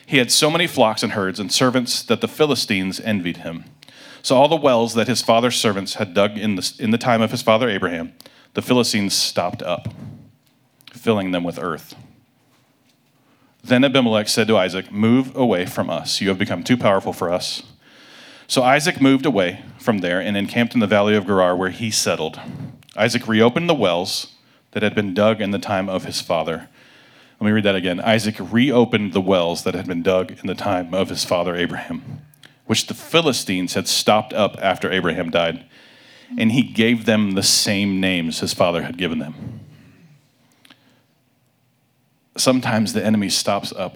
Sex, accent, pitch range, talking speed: male, American, 100-130 Hz, 180 wpm